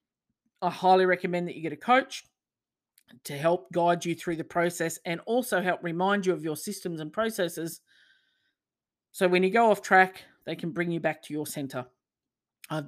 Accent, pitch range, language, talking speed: Australian, 155-205 Hz, English, 190 wpm